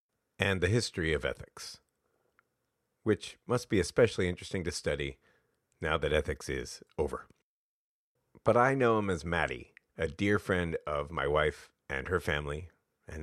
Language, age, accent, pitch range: English, 40-59, American, 80-110 Hz